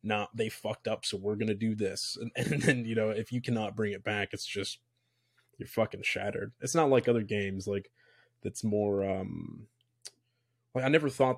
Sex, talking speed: male, 200 wpm